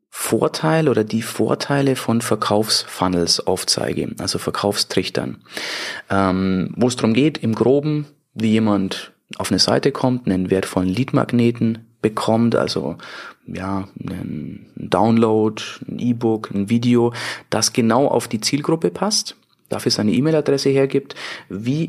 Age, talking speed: 30-49, 125 wpm